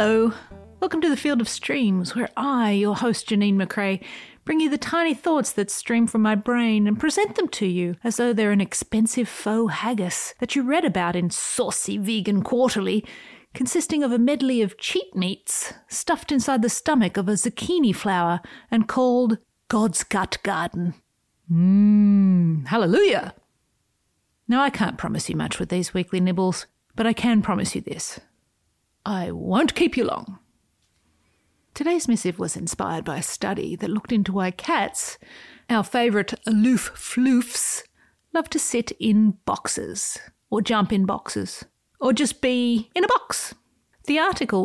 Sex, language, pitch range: female, English, 195-255 Hz